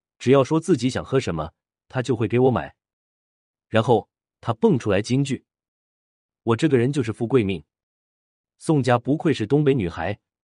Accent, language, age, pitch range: native, Chinese, 30-49, 95-135 Hz